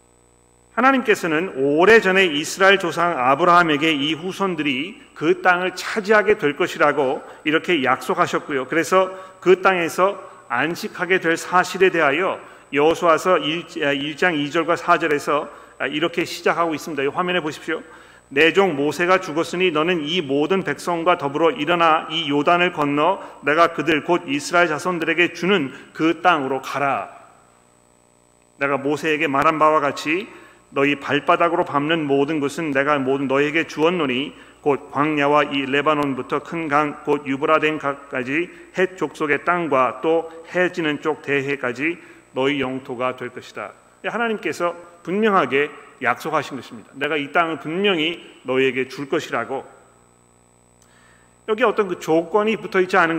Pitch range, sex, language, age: 140-175 Hz, male, Korean, 40-59